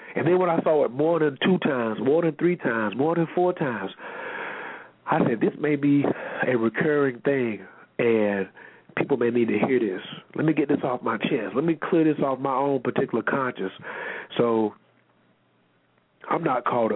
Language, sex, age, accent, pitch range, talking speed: English, male, 40-59, American, 130-180 Hz, 190 wpm